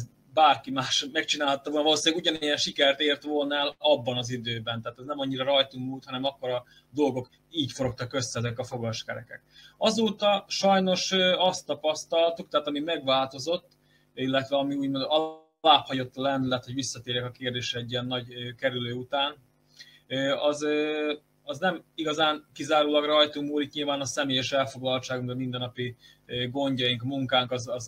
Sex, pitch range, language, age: male, 125-155 Hz, Hungarian, 20-39